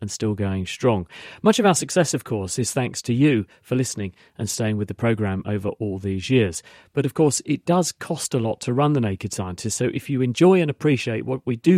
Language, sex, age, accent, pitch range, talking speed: English, male, 40-59, British, 105-145 Hz, 240 wpm